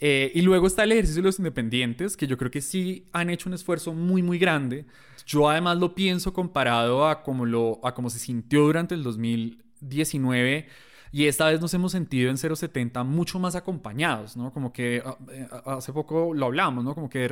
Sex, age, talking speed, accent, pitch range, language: male, 20-39, 210 wpm, Colombian, 130-170 Hz, Spanish